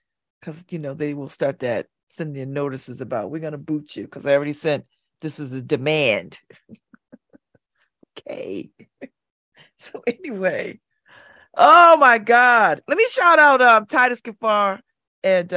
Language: English